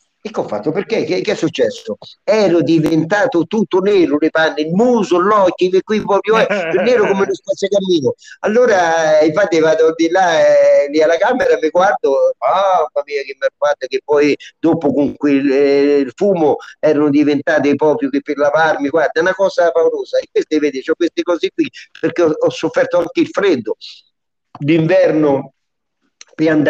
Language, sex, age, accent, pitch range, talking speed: Italian, male, 50-69, native, 155-205 Hz, 180 wpm